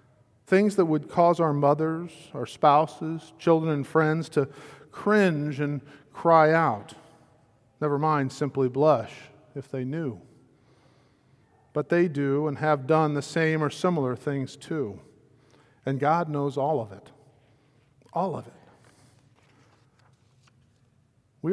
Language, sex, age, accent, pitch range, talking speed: English, male, 50-69, American, 130-155 Hz, 125 wpm